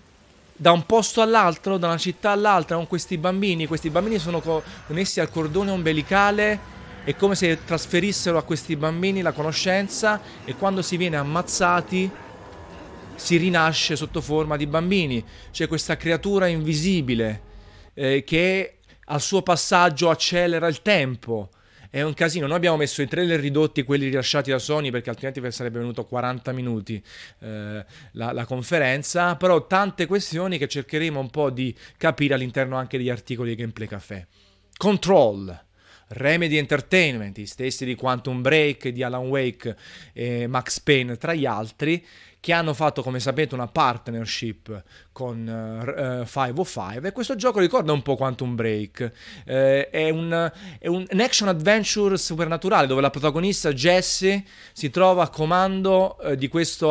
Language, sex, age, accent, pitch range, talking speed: Italian, male, 30-49, native, 130-180 Hz, 155 wpm